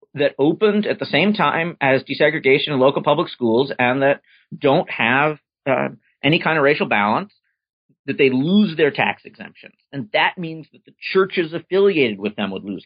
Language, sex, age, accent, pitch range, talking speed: English, male, 40-59, American, 125-190 Hz, 180 wpm